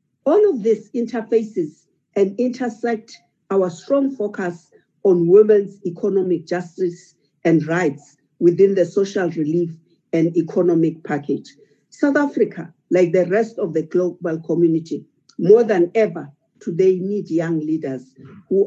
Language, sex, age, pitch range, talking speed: English, female, 50-69, 165-220 Hz, 125 wpm